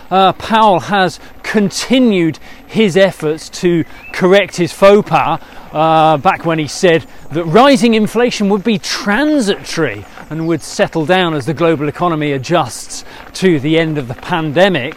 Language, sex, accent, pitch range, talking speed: English, male, British, 165-225 Hz, 150 wpm